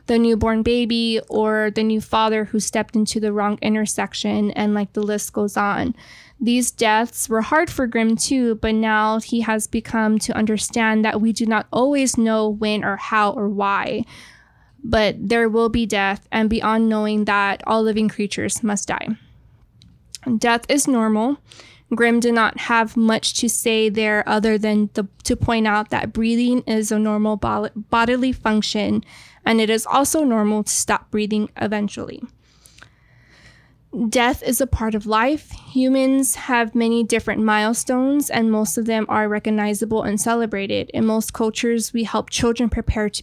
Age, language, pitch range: 10-29, English, 215-235 Hz